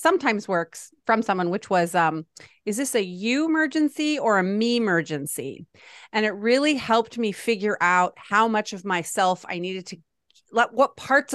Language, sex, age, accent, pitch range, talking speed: English, female, 30-49, American, 175-230 Hz, 175 wpm